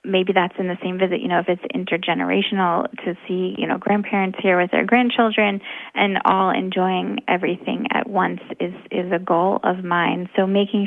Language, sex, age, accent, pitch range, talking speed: English, female, 20-39, American, 185-215 Hz, 190 wpm